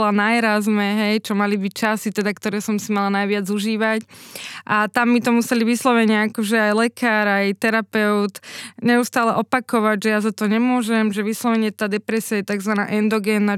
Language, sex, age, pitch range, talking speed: Slovak, female, 20-39, 210-235 Hz, 170 wpm